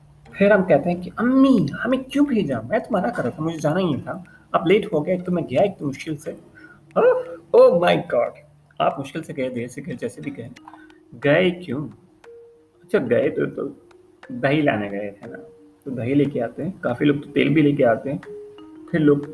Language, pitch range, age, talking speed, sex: Urdu, 125-175 Hz, 30-49, 210 wpm, male